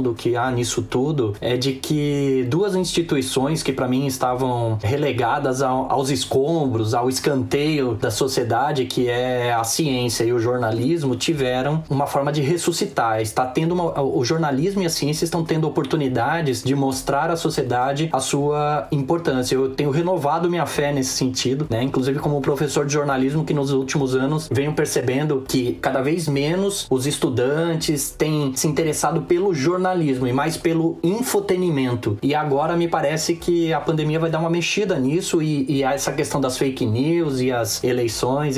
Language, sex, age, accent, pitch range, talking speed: Portuguese, male, 20-39, Brazilian, 130-160 Hz, 165 wpm